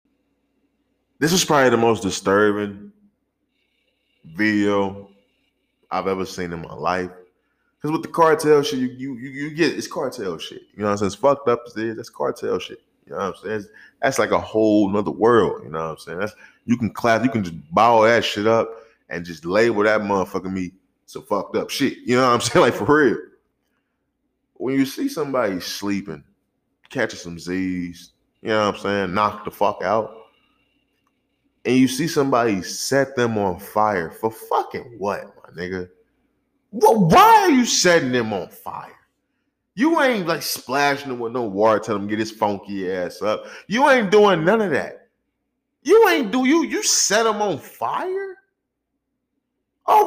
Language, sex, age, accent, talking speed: English, male, 20-39, American, 185 wpm